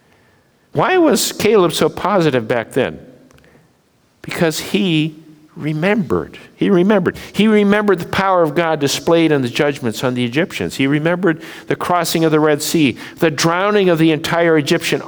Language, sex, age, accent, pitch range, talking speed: English, male, 60-79, American, 130-170 Hz, 155 wpm